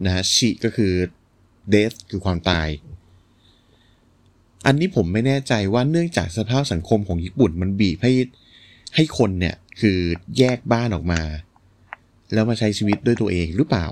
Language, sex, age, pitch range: Thai, male, 20-39, 90-115 Hz